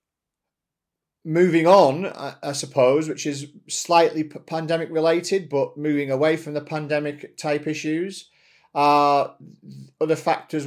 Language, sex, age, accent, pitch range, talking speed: English, male, 40-59, British, 130-160 Hz, 110 wpm